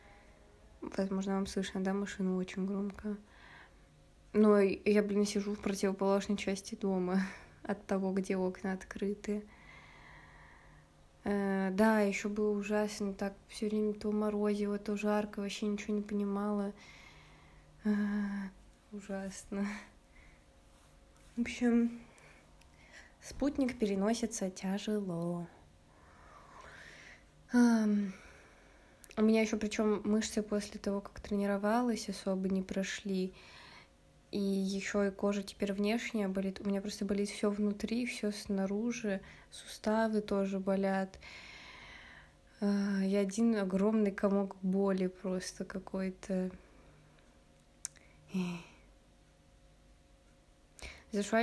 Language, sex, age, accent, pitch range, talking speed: Russian, female, 20-39, native, 190-210 Hz, 95 wpm